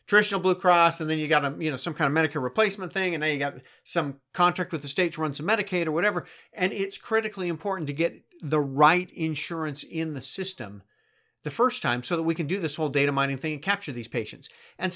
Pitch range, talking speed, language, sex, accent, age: 140-185 Hz, 235 wpm, English, male, American, 40-59